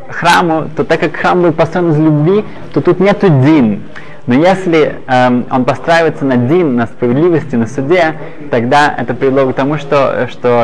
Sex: male